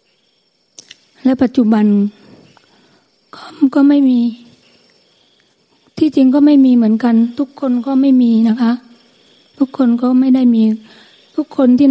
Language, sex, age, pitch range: Thai, female, 20-39, 210-250 Hz